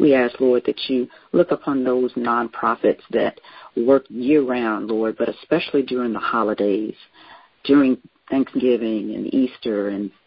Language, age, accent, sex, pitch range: Japanese, 50-69, American, female, 115-145 Hz